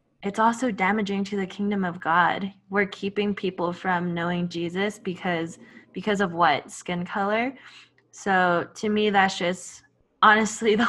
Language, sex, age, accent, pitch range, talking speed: English, female, 10-29, American, 180-210 Hz, 150 wpm